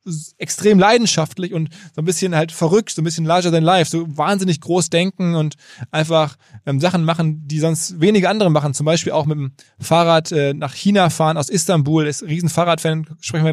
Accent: German